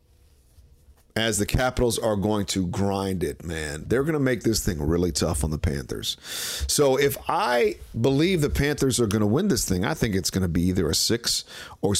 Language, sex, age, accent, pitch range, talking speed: English, male, 40-59, American, 90-110 Hz, 210 wpm